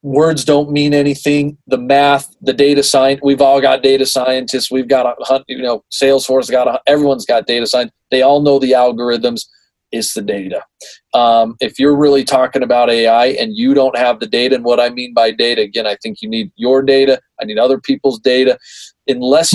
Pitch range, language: 115-140 Hz, English